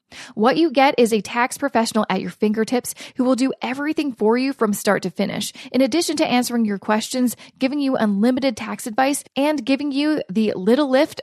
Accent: American